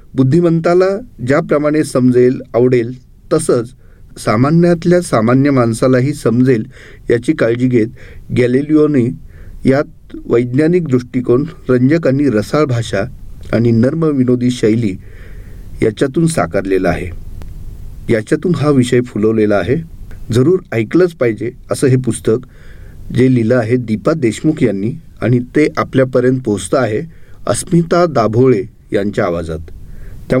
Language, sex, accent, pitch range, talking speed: Marathi, male, native, 105-140 Hz, 105 wpm